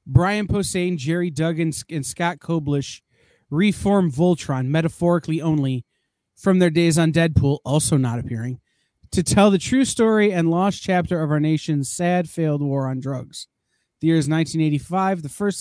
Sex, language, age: male, English, 30-49